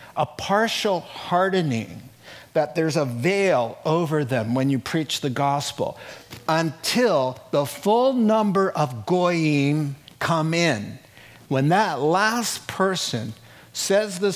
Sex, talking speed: male, 115 wpm